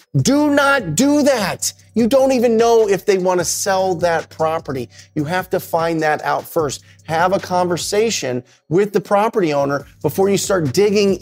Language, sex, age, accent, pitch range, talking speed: English, male, 30-49, American, 140-185 Hz, 170 wpm